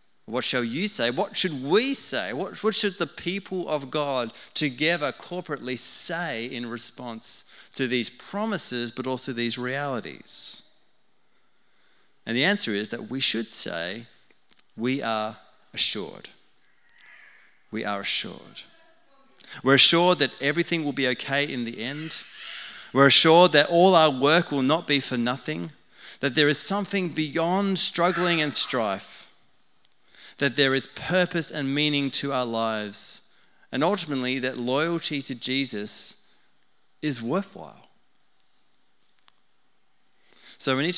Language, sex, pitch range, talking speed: English, male, 120-165 Hz, 130 wpm